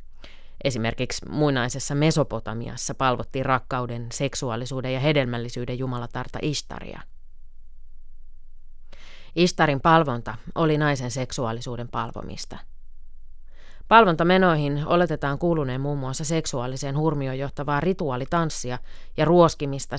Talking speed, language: 80 wpm, Finnish